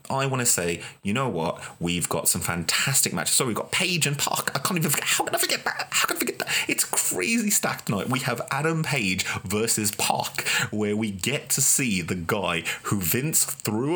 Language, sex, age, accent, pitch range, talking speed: English, male, 30-49, British, 95-130 Hz, 225 wpm